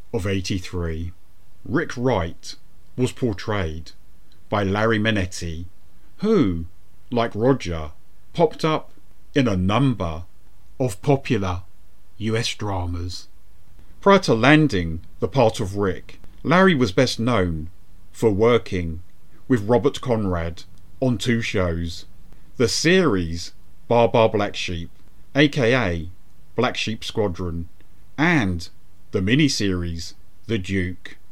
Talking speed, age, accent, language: 105 wpm, 40-59, British, English